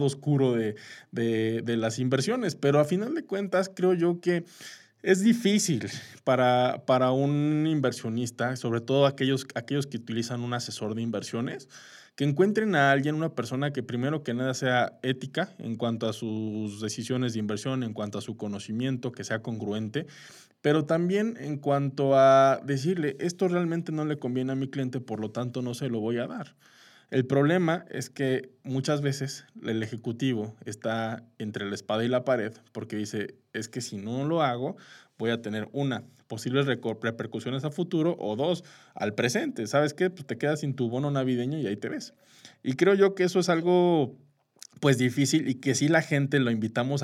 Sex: male